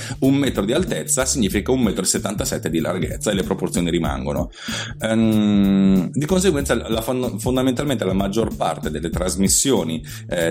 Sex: male